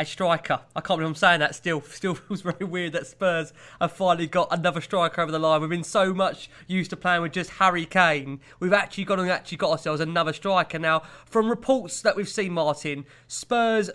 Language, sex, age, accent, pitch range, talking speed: English, male, 20-39, British, 170-215 Hz, 210 wpm